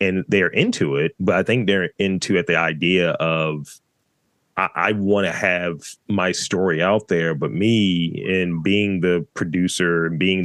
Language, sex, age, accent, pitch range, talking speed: English, male, 30-49, American, 90-110 Hz, 160 wpm